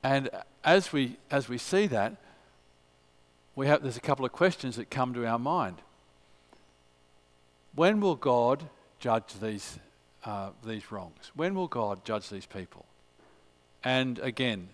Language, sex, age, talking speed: English, male, 50-69, 145 wpm